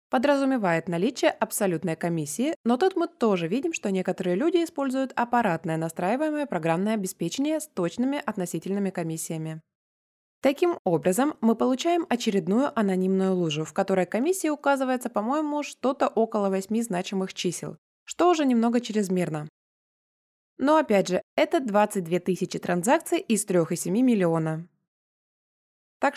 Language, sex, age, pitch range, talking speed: Russian, female, 20-39, 175-270 Hz, 120 wpm